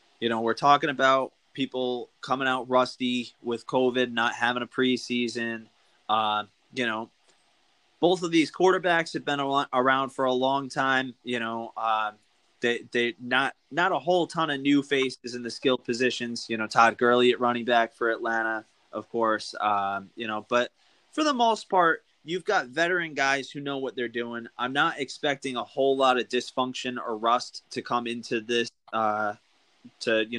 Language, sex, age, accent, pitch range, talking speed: English, male, 20-39, American, 120-145 Hz, 180 wpm